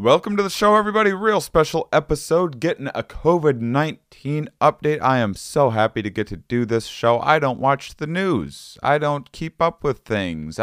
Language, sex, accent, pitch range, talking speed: English, male, American, 115-175 Hz, 185 wpm